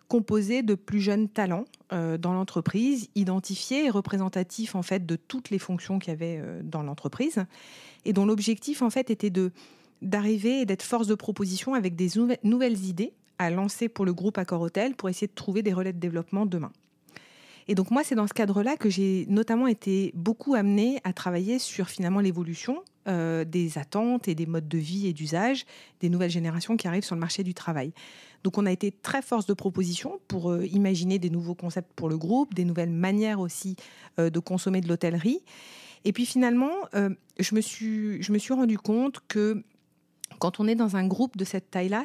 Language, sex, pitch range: French, female, 175-215 Hz